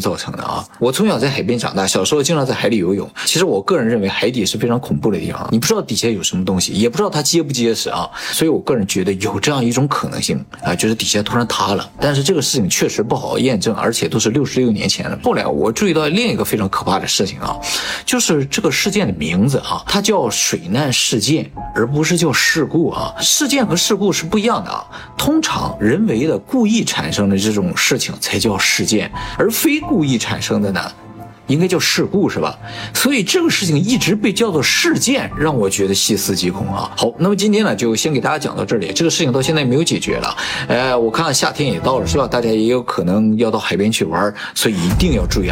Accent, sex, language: native, male, Chinese